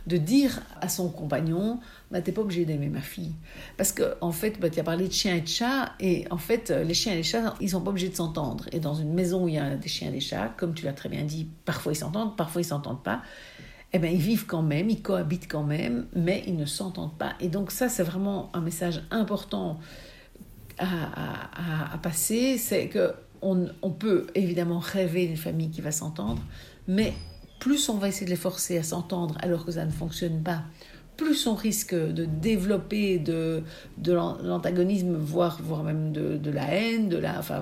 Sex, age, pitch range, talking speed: female, 60-79, 165-200 Hz, 220 wpm